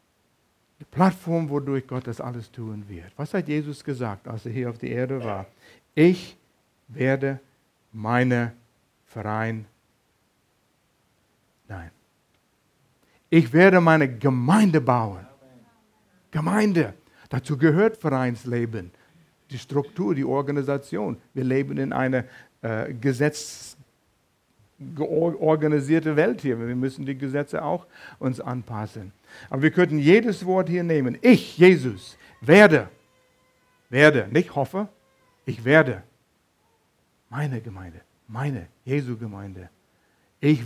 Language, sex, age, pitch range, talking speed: German, male, 60-79, 120-155 Hz, 105 wpm